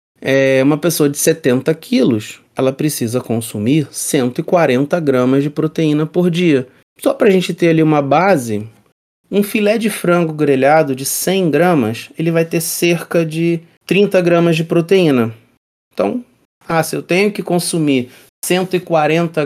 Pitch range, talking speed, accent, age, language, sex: 135-190 Hz, 150 wpm, Brazilian, 30-49, Portuguese, male